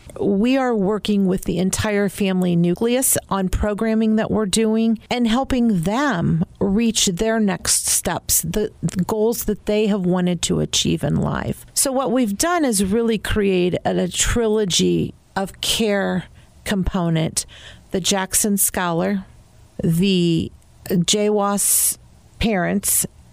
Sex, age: female, 50-69